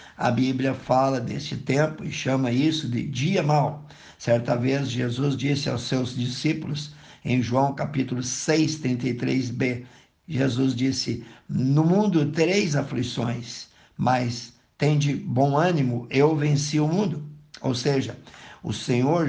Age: 60-79